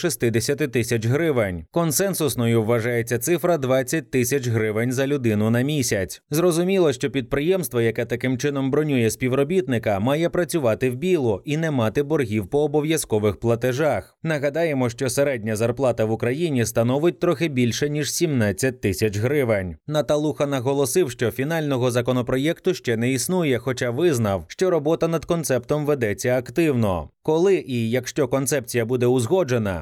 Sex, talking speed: male, 135 wpm